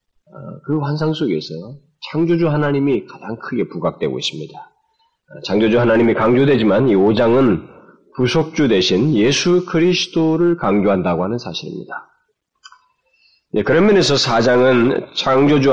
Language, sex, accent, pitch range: Korean, male, native, 95-150 Hz